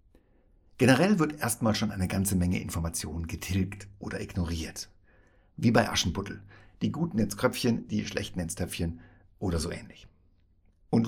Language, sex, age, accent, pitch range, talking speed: German, male, 60-79, German, 90-110 Hz, 140 wpm